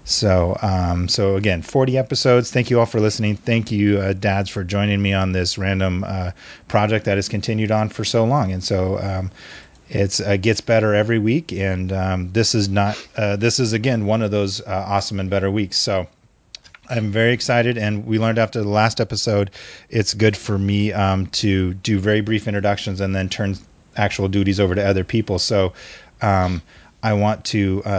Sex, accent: male, American